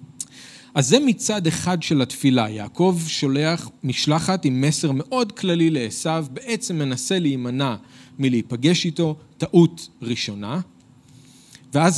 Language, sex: Hebrew, male